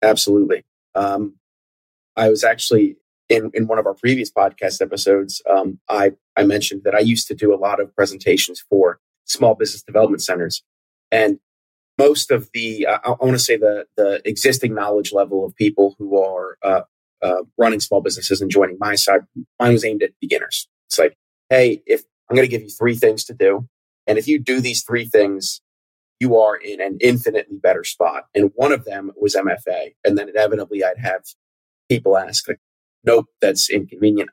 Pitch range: 100-120 Hz